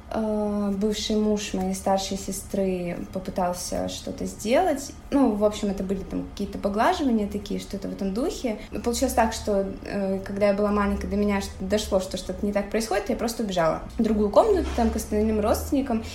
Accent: native